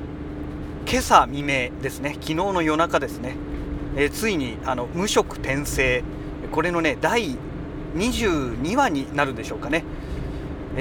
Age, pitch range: 40-59, 115-150 Hz